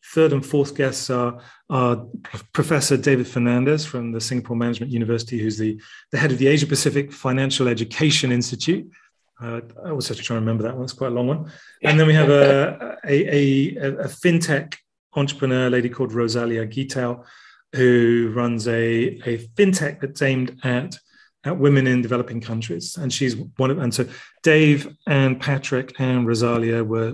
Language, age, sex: English, 30-49, male